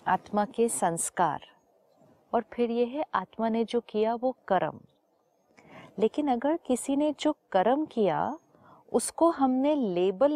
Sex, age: female, 50-69